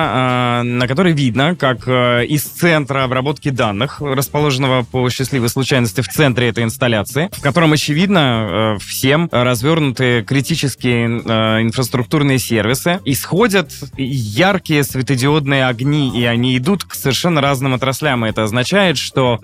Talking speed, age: 115 wpm, 20-39